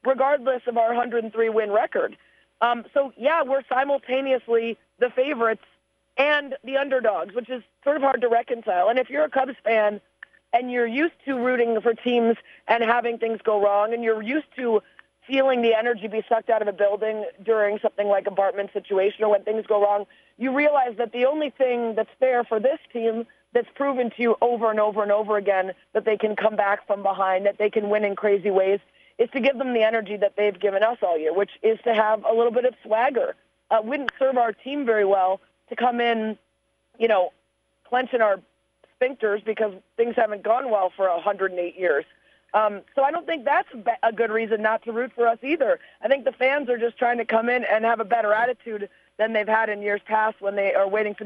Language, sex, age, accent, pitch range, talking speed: English, female, 30-49, American, 210-255 Hz, 215 wpm